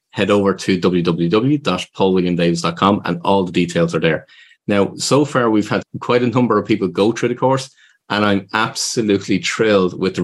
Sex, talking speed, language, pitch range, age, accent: male, 175 wpm, English, 90-115 Hz, 30-49, Irish